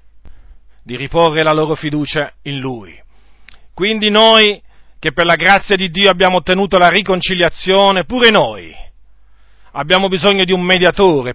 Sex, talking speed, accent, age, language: male, 135 wpm, native, 40-59, Italian